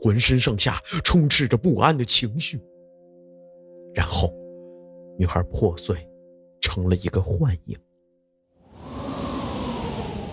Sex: male